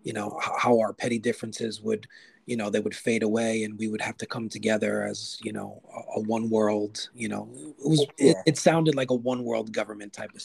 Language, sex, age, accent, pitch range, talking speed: English, male, 30-49, American, 105-120 Hz, 230 wpm